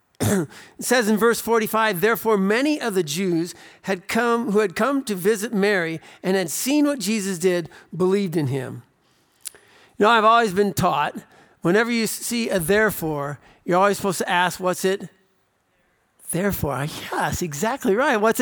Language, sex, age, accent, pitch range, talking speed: English, male, 50-69, American, 190-235 Hz, 165 wpm